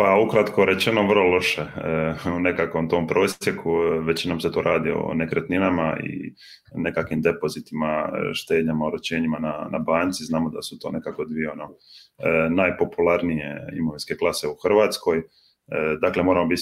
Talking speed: 150 wpm